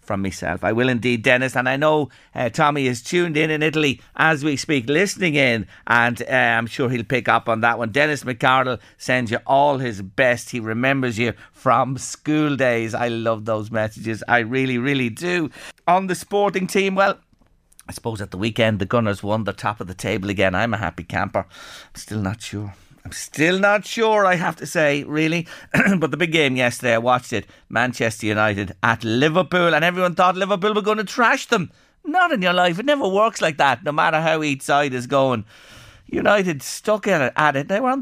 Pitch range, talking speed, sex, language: 110-170 Hz, 210 wpm, male, English